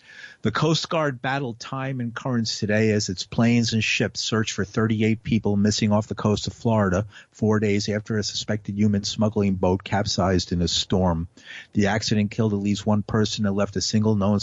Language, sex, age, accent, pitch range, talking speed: English, male, 50-69, American, 100-115 Hz, 195 wpm